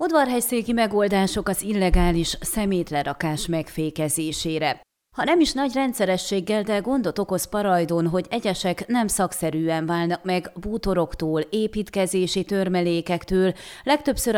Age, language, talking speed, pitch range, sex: 30-49, Hungarian, 105 wpm, 170-225 Hz, female